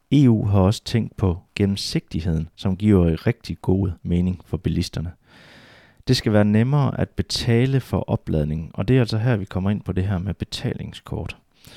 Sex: male